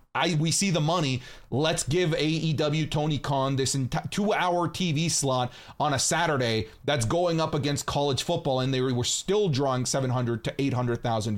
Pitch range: 135-190 Hz